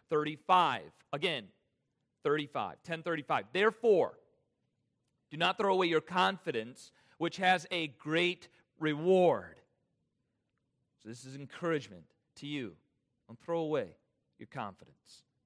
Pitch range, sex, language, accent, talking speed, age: 150-225 Hz, male, English, American, 105 wpm, 40-59